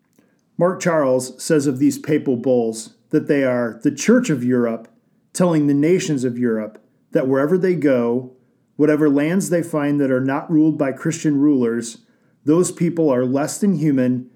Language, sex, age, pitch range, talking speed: English, male, 40-59, 130-160 Hz, 165 wpm